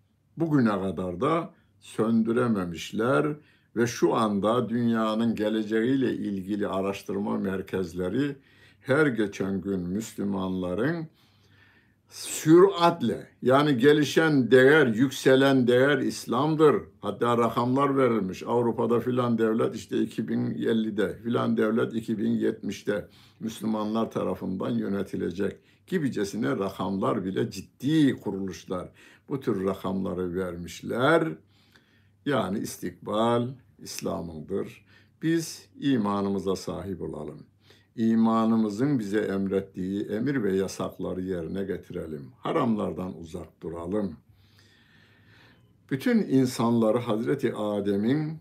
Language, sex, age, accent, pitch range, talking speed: Turkish, male, 60-79, native, 100-125 Hz, 85 wpm